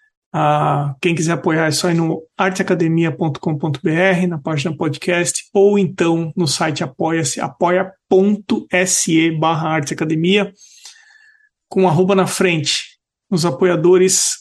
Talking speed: 105 wpm